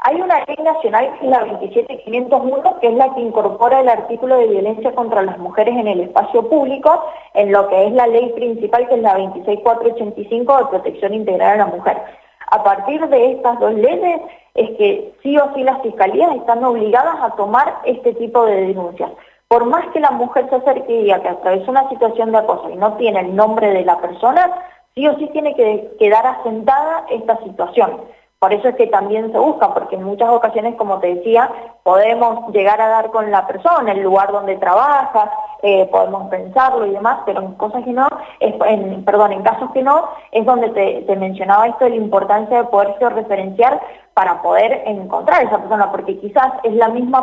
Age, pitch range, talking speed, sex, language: 20-39, 205-265 Hz, 195 wpm, female, Spanish